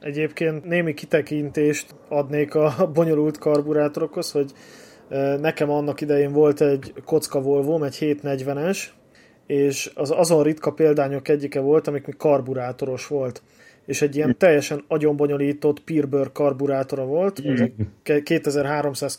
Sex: male